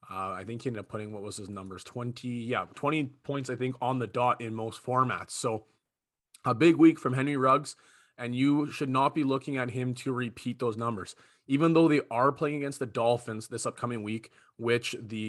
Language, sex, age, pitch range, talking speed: English, male, 30-49, 115-135 Hz, 215 wpm